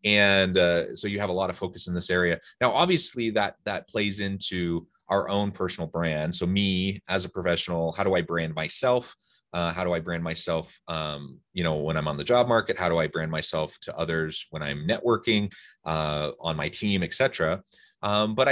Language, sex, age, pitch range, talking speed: English, male, 30-49, 85-110 Hz, 205 wpm